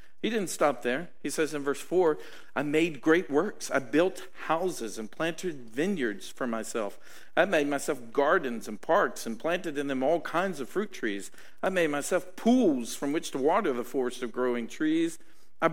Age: 50-69